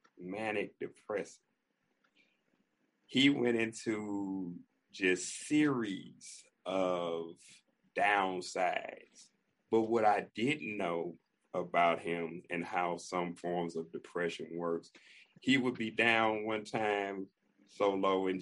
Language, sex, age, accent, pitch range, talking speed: English, male, 40-59, American, 95-140 Hz, 105 wpm